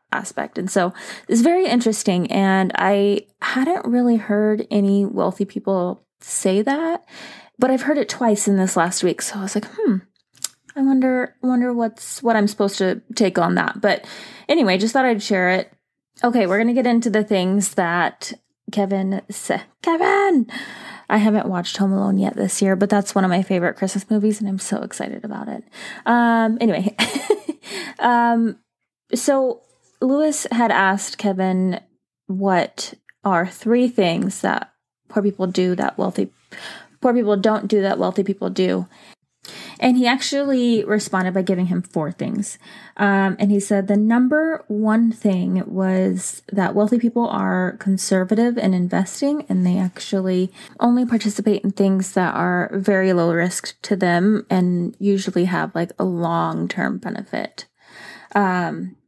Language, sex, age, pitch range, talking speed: English, female, 20-39, 190-235 Hz, 155 wpm